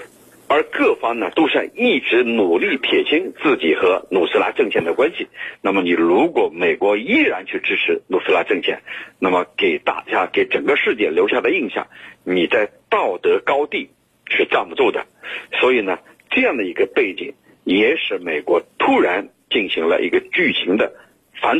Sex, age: male, 50-69